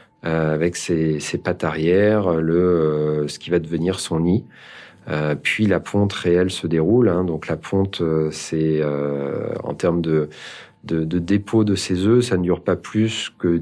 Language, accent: French, French